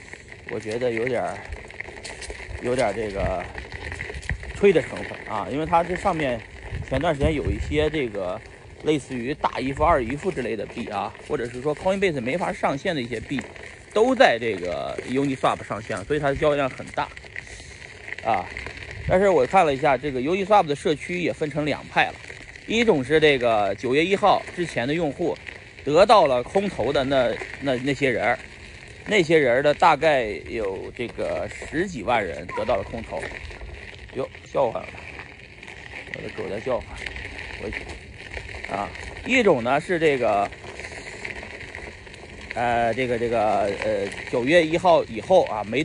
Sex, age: male, 30-49